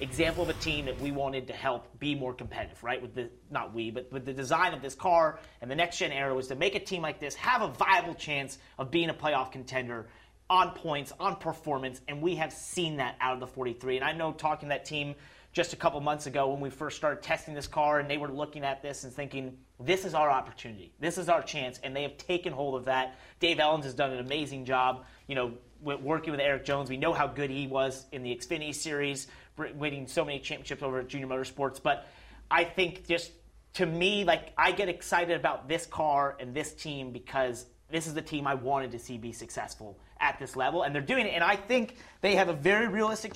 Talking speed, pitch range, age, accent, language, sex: 235 wpm, 135-185 Hz, 30-49, American, English, male